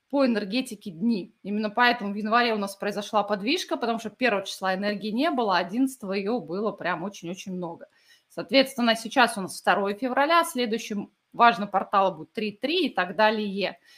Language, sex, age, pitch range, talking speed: Russian, female, 20-39, 205-255 Hz, 170 wpm